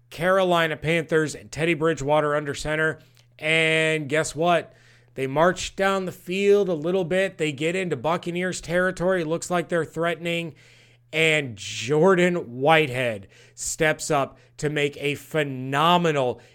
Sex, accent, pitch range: male, American, 130-160 Hz